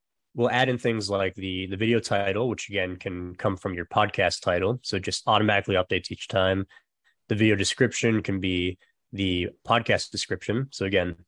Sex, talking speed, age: male, 180 wpm, 20-39